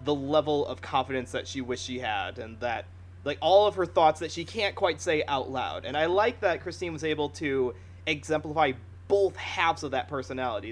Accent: American